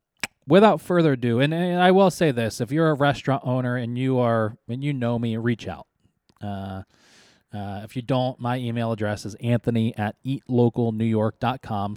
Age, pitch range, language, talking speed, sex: 20-39, 110-145 Hz, English, 175 wpm, male